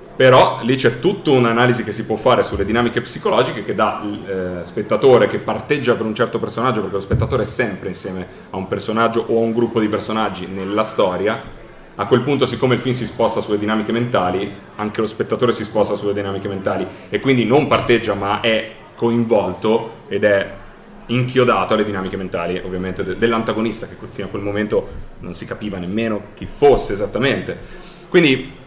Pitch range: 105-125 Hz